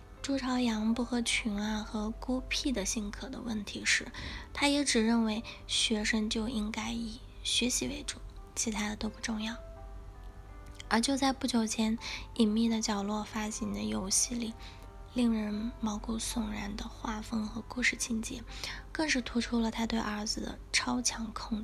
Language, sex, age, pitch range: Chinese, female, 20-39, 215-235 Hz